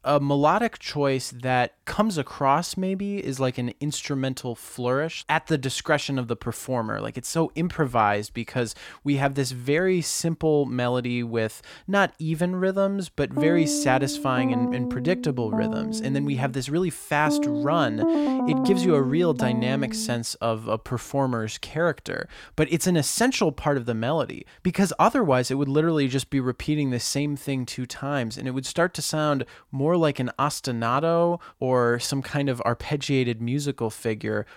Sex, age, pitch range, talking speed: male, 20-39, 125-180 Hz, 170 wpm